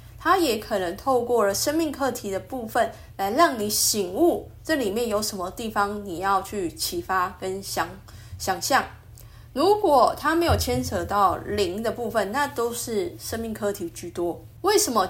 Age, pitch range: 20-39, 180-275 Hz